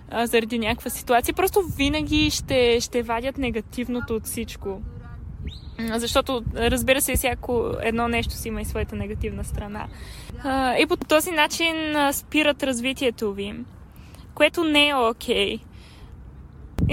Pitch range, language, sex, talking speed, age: 225-270 Hz, Bulgarian, female, 125 wpm, 20-39